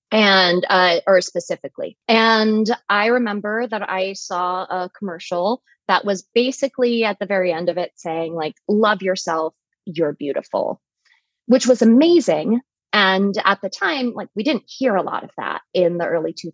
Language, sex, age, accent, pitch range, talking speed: English, female, 20-39, American, 185-235 Hz, 165 wpm